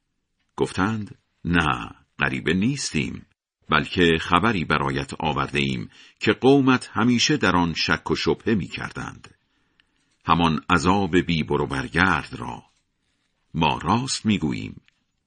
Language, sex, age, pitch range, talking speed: Persian, male, 50-69, 85-120 Hz, 110 wpm